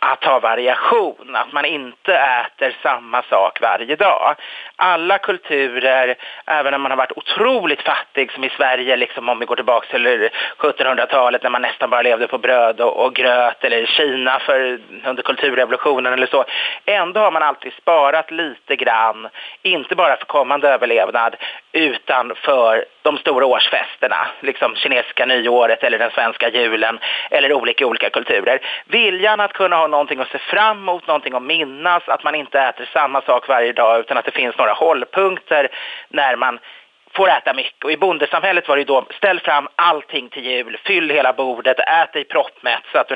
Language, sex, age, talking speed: English, male, 30-49, 175 wpm